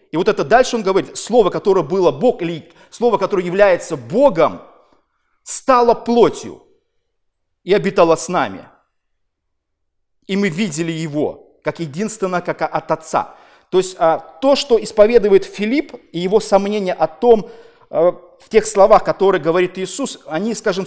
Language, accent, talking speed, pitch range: Russian, native, 140 wpm, 160-215 Hz